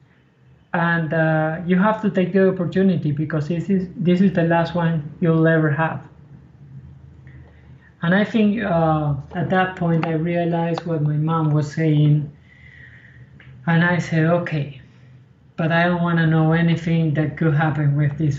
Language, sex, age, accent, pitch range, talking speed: English, male, 20-39, Spanish, 160-185 Hz, 155 wpm